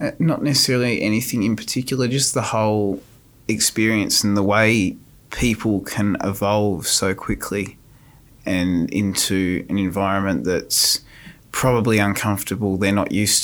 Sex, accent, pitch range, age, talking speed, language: male, Australian, 100-110 Hz, 20-39, 125 wpm, English